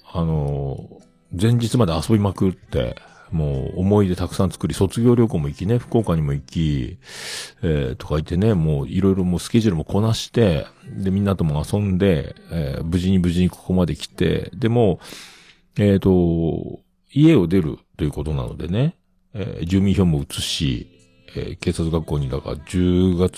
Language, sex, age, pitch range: Japanese, male, 40-59, 75-110 Hz